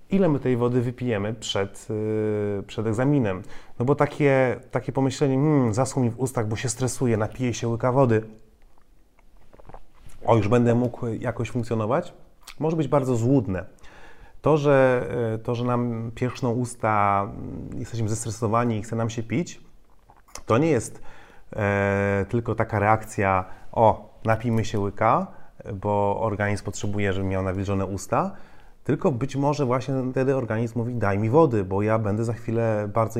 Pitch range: 105-125 Hz